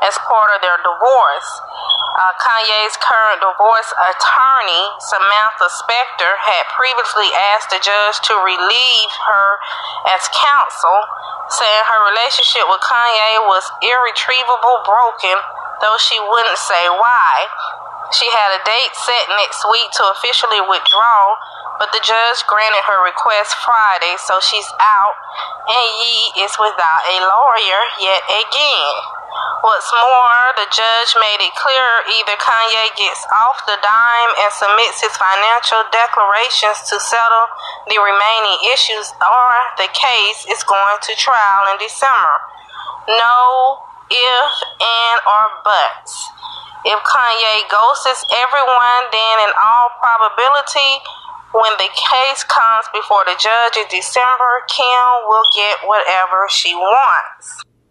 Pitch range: 205-245 Hz